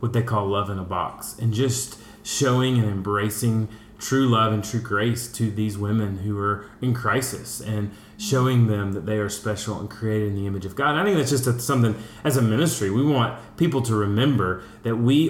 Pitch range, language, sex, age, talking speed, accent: 110-145 Hz, English, male, 30-49, 210 wpm, American